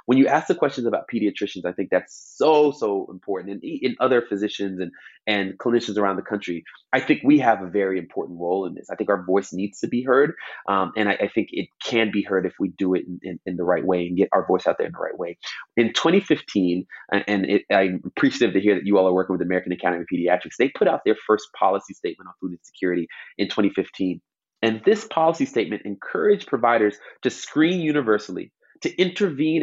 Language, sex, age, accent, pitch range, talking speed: English, male, 30-49, American, 95-125 Hz, 225 wpm